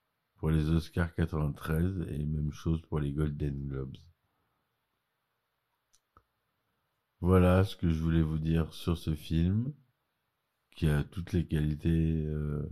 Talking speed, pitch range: 125 wpm, 75-85 Hz